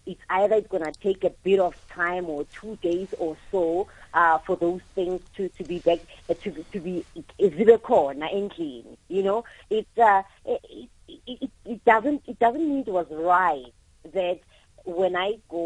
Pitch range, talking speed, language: 180-235 Hz, 190 wpm, English